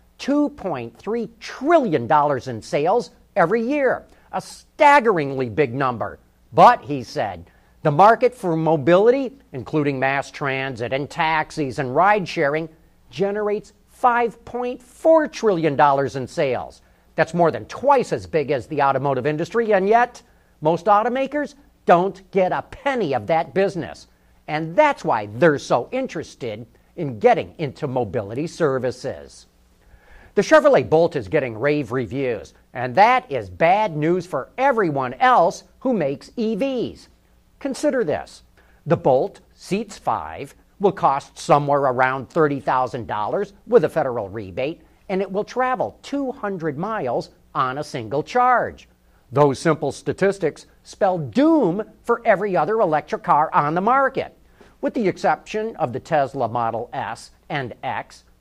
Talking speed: 135 wpm